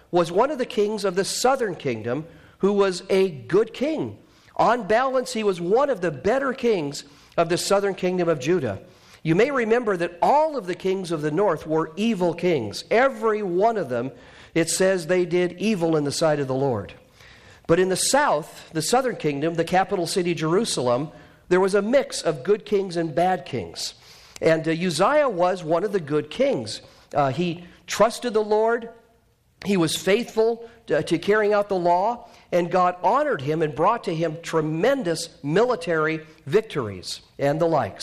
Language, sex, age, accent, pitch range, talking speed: English, male, 50-69, American, 150-200 Hz, 180 wpm